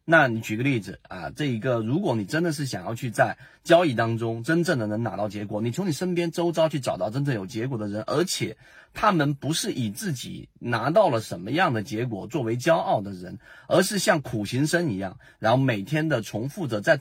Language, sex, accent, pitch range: Chinese, male, native, 110-155 Hz